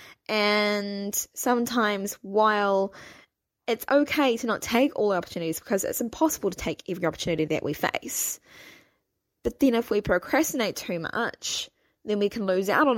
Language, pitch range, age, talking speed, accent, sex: English, 185-245 Hz, 20-39, 155 wpm, Australian, female